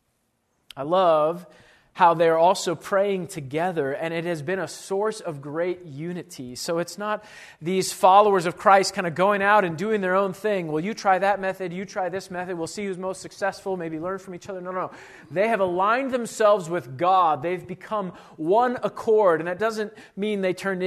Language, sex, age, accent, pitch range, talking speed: English, male, 40-59, American, 160-205 Hz, 200 wpm